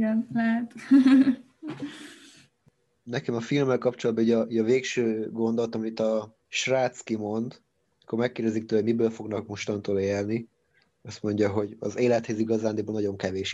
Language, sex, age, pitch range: Hungarian, male, 20-39, 110-125 Hz